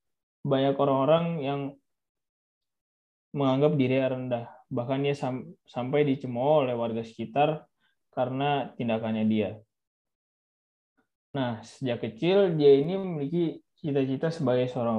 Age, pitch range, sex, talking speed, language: 20-39, 115-140 Hz, male, 100 wpm, Indonesian